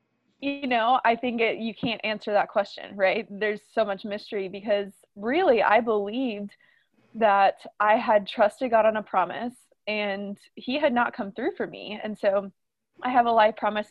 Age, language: 20-39, English